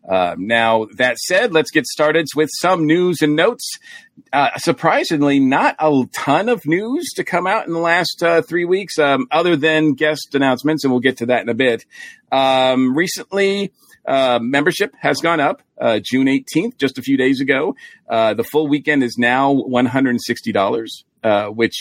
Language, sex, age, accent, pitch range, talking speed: English, male, 40-59, American, 115-155 Hz, 180 wpm